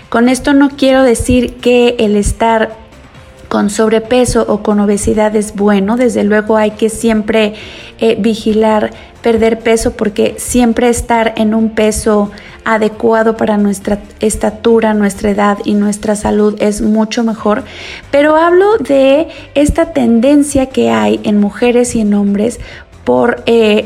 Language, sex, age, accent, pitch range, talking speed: Spanish, female, 30-49, Mexican, 215-245 Hz, 140 wpm